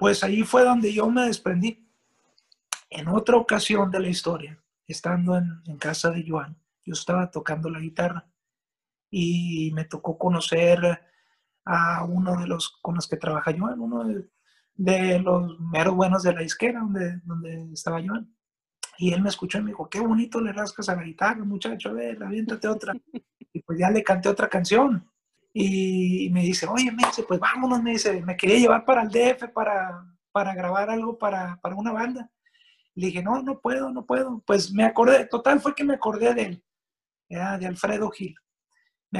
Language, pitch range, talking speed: Spanish, 175-225 Hz, 180 wpm